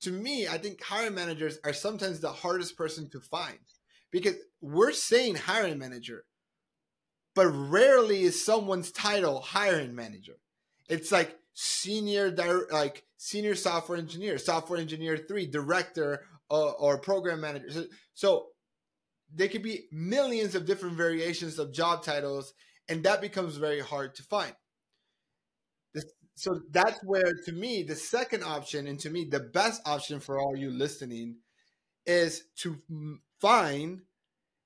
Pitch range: 150-195 Hz